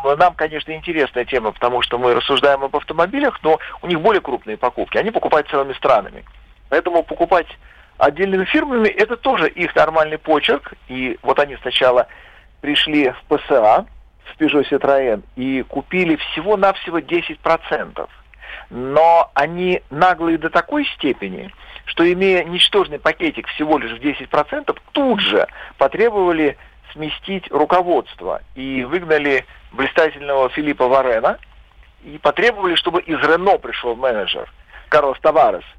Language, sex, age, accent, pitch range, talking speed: Russian, male, 50-69, native, 135-175 Hz, 125 wpm